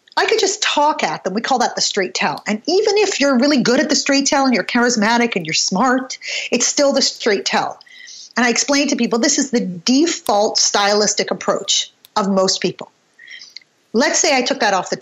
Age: 40-59